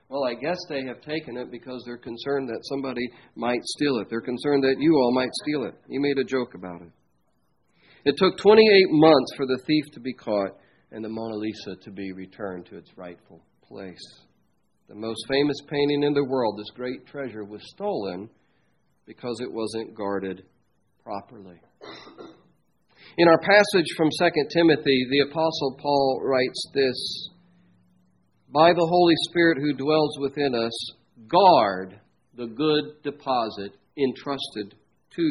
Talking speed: 155 wpm